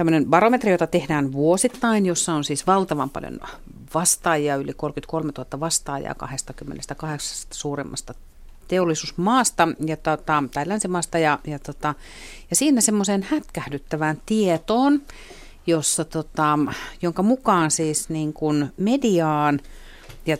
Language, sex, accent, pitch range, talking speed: Finnish, female, native, 145-180 Hz, 110 wpm